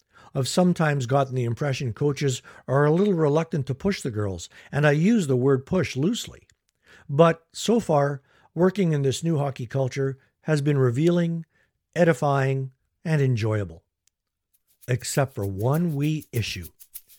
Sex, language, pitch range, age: male, English, 115-150 Hz, 60-79